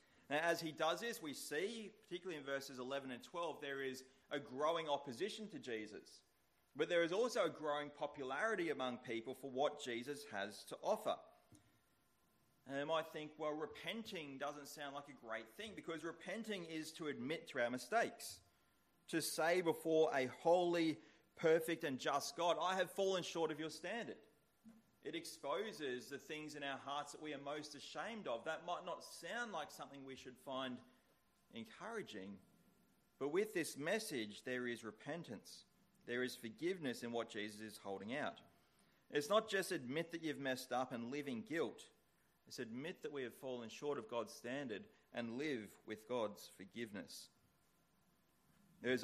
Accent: Australian